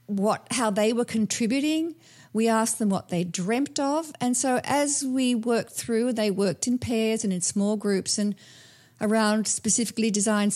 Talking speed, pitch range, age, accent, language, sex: 170 wpm, 195-245 Hz, 50-69, Australian, English, female